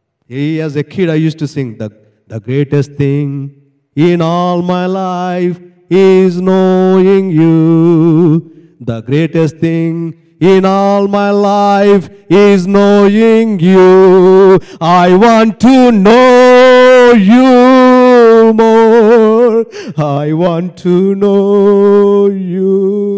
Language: English